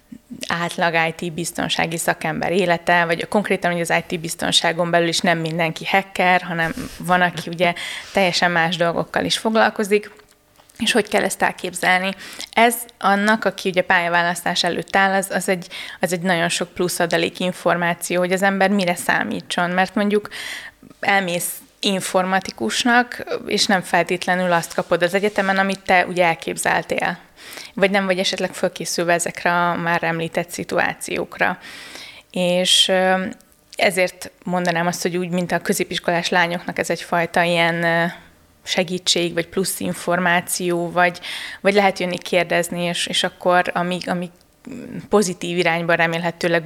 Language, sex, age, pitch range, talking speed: Hungarian, female, 20-39, 170-190 Hz, 135 wpm